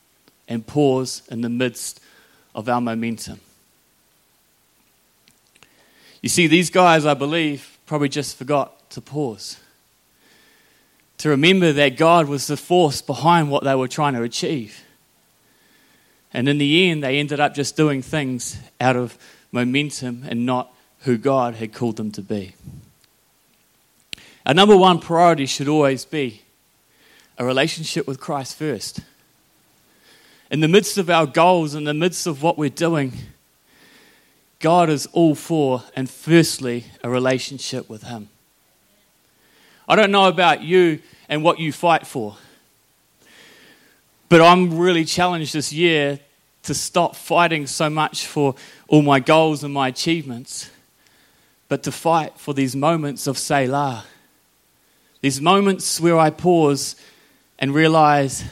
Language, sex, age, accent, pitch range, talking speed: English, male, 30-49, Australian, 130-165 Hz, 135 wpm